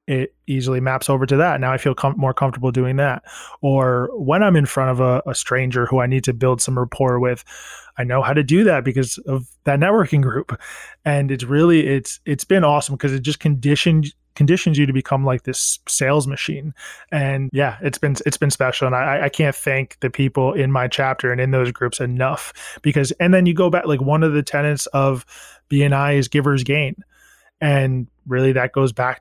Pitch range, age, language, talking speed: 130-150 Hz, 20-39, English, 215 wpm